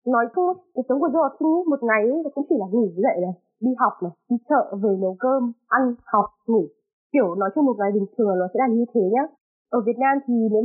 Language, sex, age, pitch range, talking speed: Vietnamese, female, 20-39, 210-275 Hz, 265 wpm